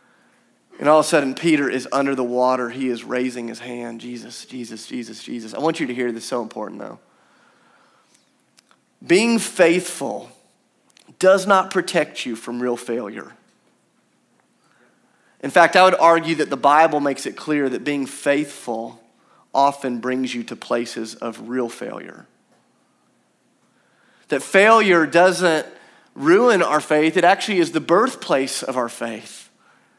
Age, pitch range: 30-49, 140-190 Hz